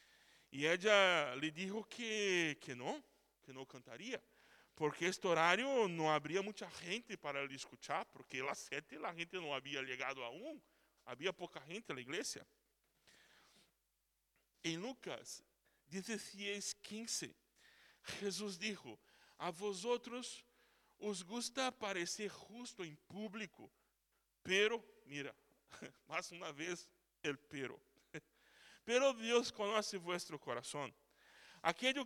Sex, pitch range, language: male, 175-225 Hz, Spanish